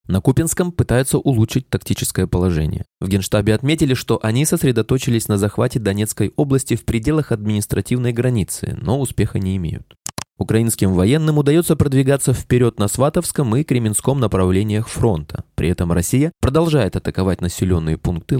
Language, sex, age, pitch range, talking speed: Russian, male, 20-39, 95-135 Hz, 135 wpm